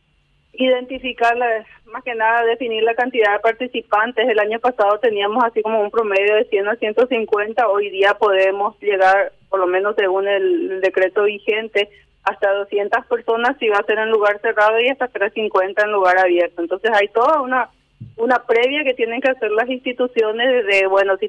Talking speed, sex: 185 wpm, female